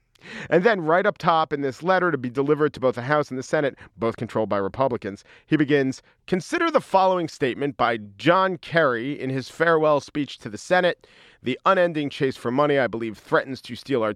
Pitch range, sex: 120-180 Hz, male